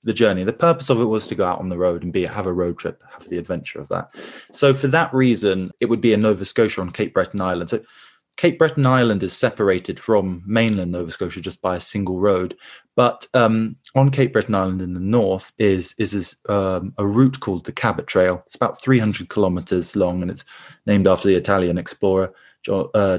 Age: 20-39